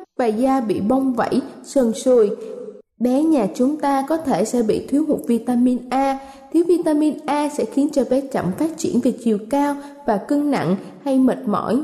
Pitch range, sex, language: 235-305 Hz, female, Thai